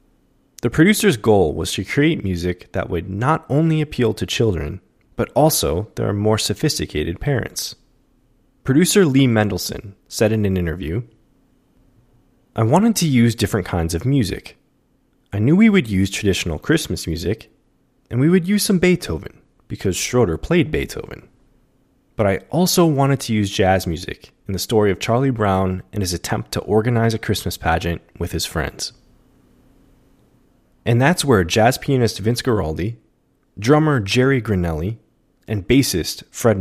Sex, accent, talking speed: male, American, 150 wpm